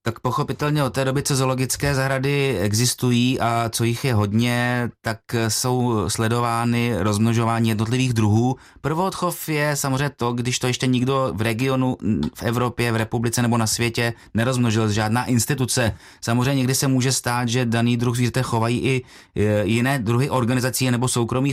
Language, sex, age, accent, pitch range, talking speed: Czech, male, 30-49, native, 115-130 Hz, 155 wpm